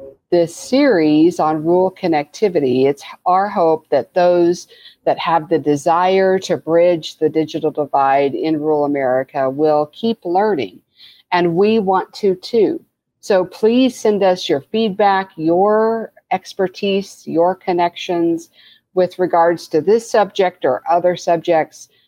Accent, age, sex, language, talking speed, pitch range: American, 50-69, female, English, 130 wpm, 155-195 Hz